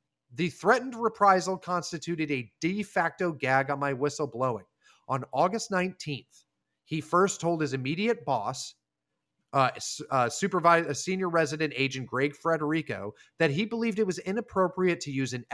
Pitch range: 140-185 Hz